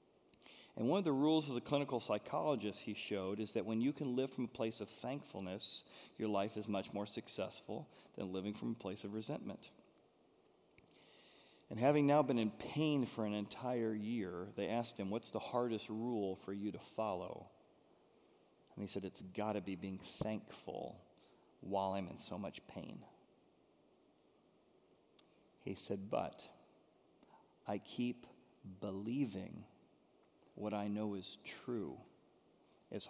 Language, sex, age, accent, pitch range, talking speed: English, male, 40-59, American, 100-125 Hz, 150 wpm